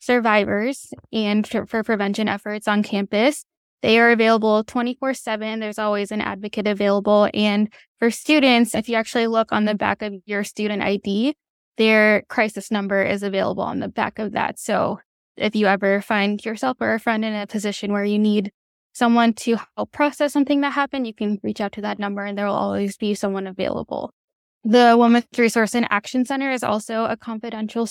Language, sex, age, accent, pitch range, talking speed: English, female, 10-29, American, 210-240 Hz, 185 wpm